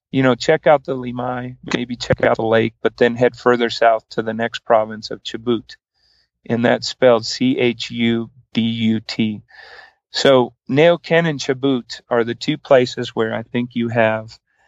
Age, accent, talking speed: 40-59, American, 180 wpm